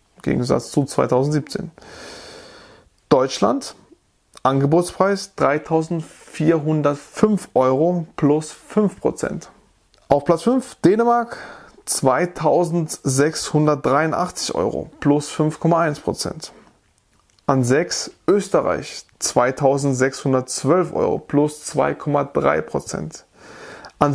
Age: 20-39